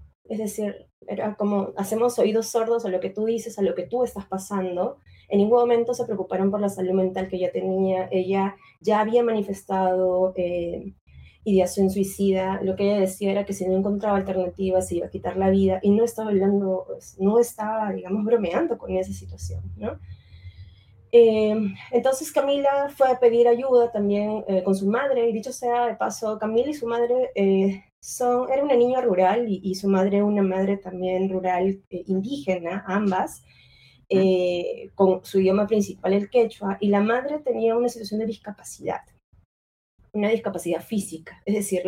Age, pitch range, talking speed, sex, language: 20-39, 185-220 Hz, 175 wpm, female, Spanish